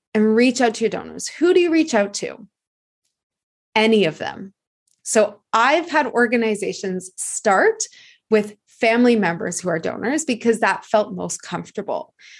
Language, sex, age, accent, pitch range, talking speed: English, female, 20-39, American, 205-275 Hz, 150 wpm